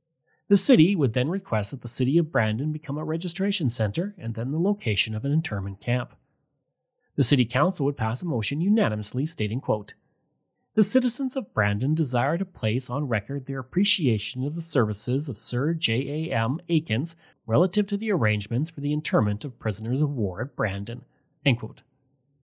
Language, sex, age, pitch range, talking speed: English, male, 30-49, 115-160 Hz, 175 wpm